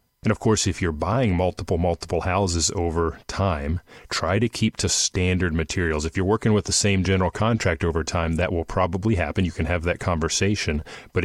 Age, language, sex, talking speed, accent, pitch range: 30-49, English, male, 195 wpm, American, 85-105 Hz